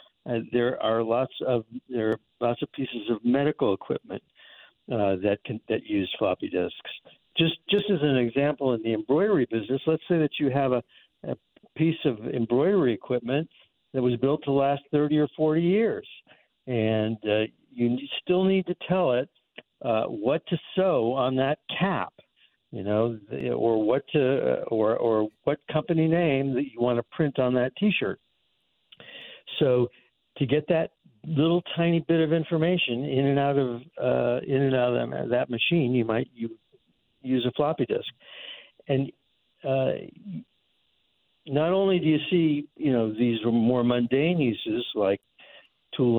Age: 60-79